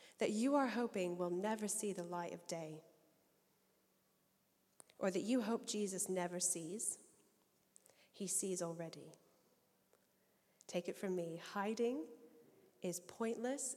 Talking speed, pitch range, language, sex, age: 120 wpm, 180-230 Hz, English, female, 10-29